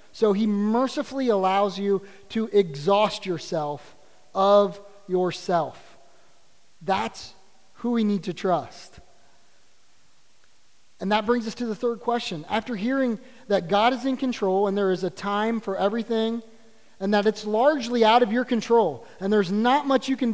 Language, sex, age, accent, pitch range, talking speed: English, male, 30-49, American, 180-225 Hz, 155 wpm